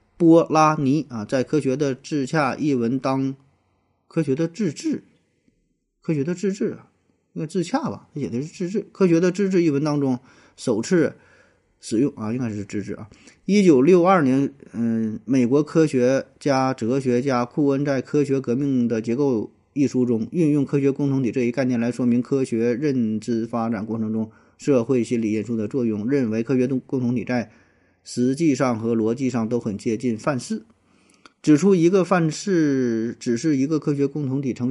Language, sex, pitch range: Chinese, male, 115-145 Hz